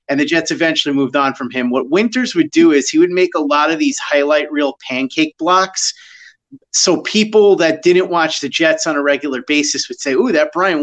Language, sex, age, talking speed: English, male, 30-49, 220 wpm